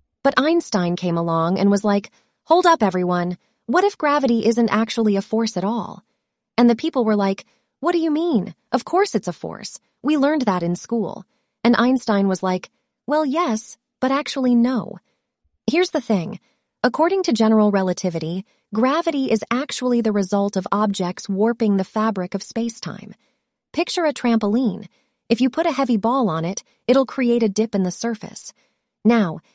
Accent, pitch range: American, 195-255 Hz